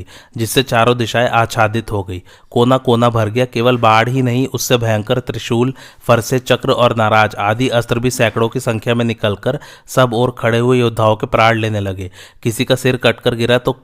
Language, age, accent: Hindi, 30-49, native